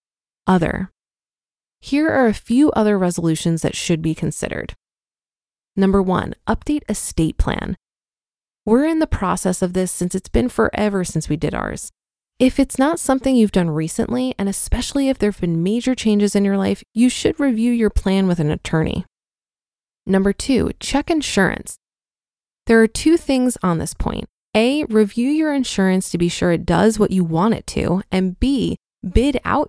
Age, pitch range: 20-39, 185-250 Hz